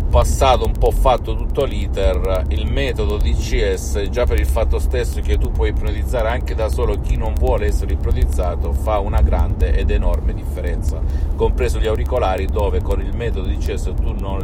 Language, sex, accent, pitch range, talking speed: Italian, male, native, 70-90 Hz, 185 wpm